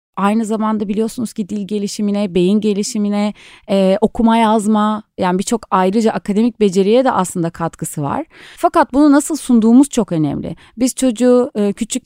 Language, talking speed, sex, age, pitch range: Turkish, 150 wpm, female, 30-49, 185-245 Hz